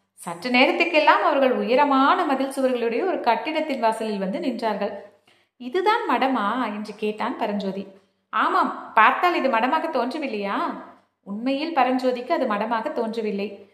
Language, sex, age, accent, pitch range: Tamil, female, 30-49, native, 215-290 Hz